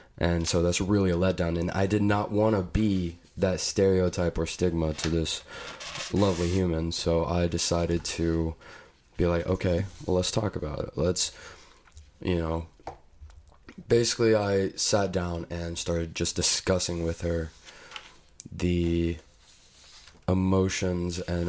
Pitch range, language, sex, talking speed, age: 80-90 Hz, English, male, 135 wpm, 20-39